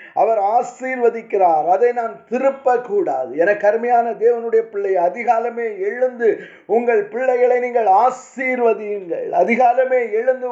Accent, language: native, Tamil